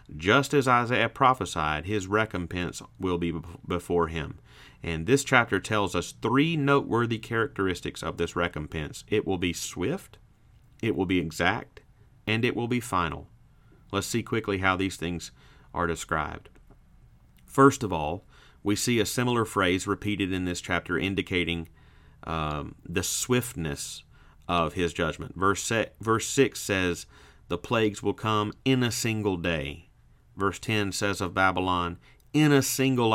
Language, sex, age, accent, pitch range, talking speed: English, male, 40-59, American, 85-115 Hz, 145 wpm